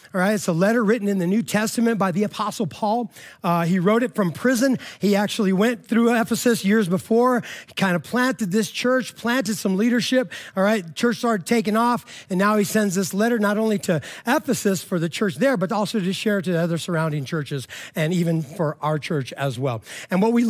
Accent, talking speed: American, 220 wpm